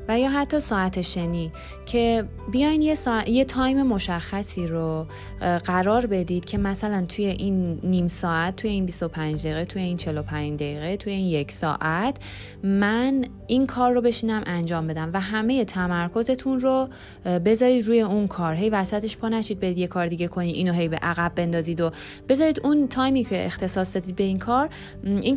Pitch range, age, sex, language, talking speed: 170-225 Hz, 30-49, female, Persian, 170 wpm